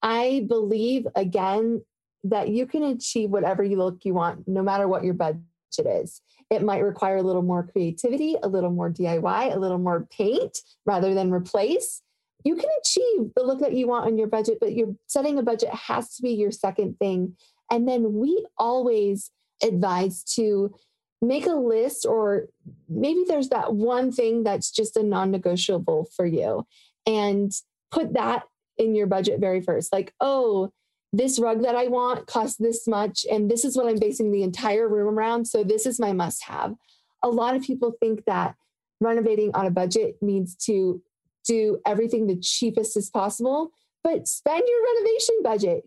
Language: English